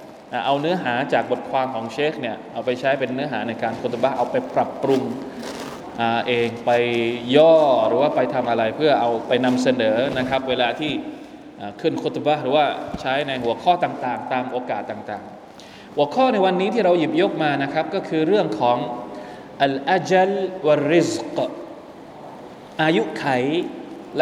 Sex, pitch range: male, 140-195 Hz